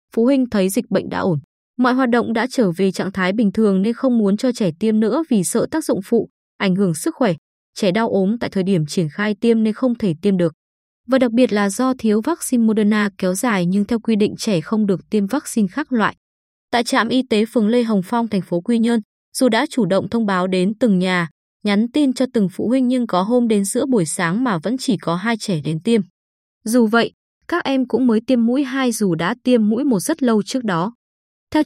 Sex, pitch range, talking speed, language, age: female, 195-250 Hz, 245 wpm, Vietnamese, 20-39